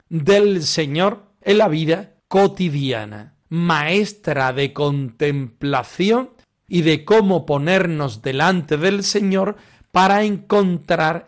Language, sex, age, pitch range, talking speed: Spanish, male, 40-59, 140-190 Hz, 95 wpm